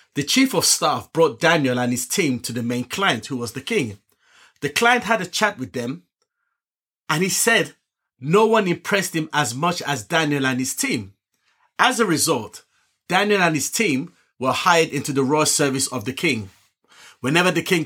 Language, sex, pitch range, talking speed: English, male, 135-185 Hz, 190 wpm